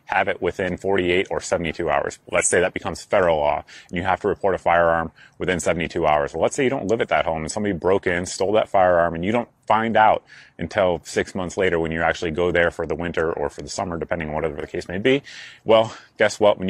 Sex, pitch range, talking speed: male, 85-105 Hz, 255 wpm